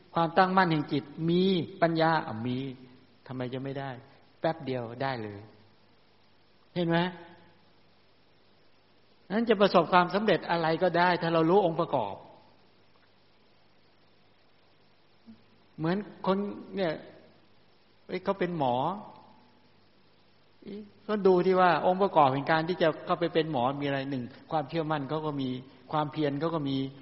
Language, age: English, 60-79